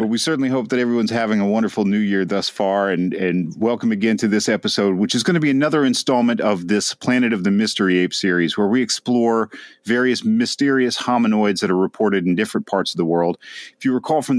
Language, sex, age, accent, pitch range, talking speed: English, male, 40-59, American, 90-115 Hz, 225 wpm